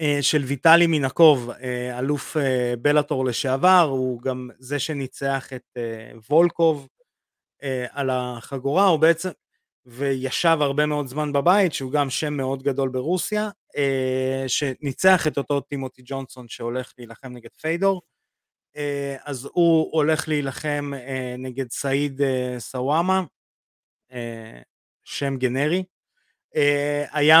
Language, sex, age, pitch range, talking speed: Hebrew, male, 30-49, 125-155 Hz, 100 wpm